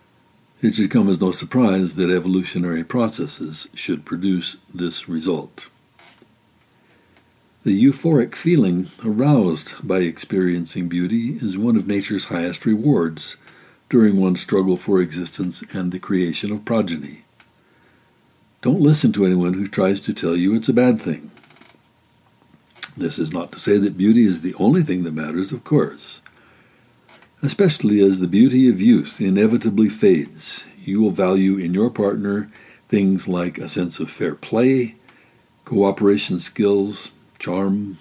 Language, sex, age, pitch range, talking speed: English, male, 60-79, 90-120 Hz, 140 wpm